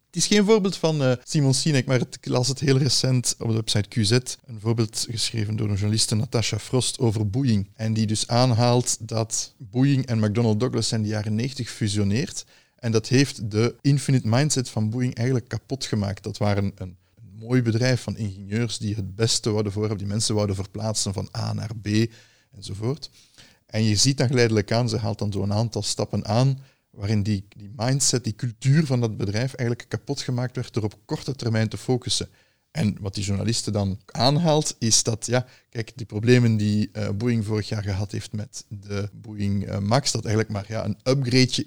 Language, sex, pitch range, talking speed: Dutch, male, 105-130 Hz, 195 wpm